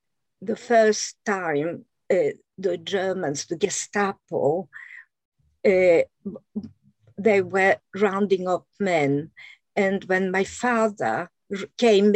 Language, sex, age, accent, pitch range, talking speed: English, female, 50-69, French, 190-245 Hz, 95 wpm